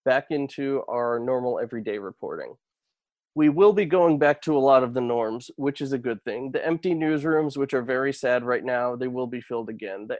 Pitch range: 125-140 Hz